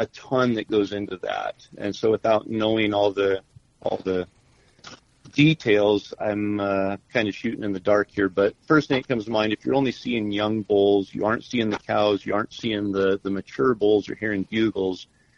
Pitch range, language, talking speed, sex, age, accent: 100-110 Hz, English, 205 wpm, male, 50-69, American